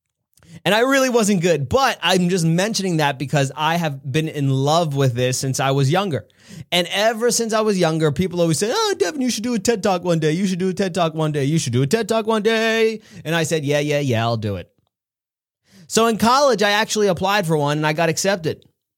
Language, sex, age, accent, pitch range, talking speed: English, male, 30-49, American, 135-190 Hz, 245 wpm